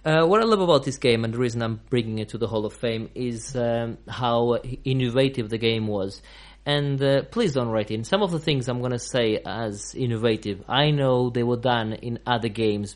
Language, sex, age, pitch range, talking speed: English, male, 30-49, 115-130 Hz, 225 wpm